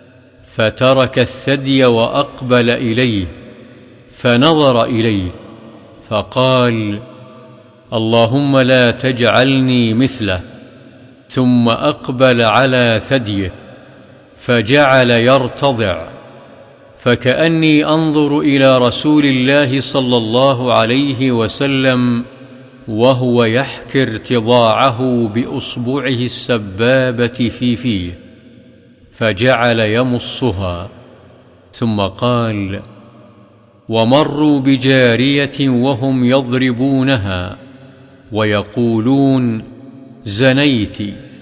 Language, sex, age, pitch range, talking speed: Arabic, male, 50-69, 115-135 Hz, 60 wpm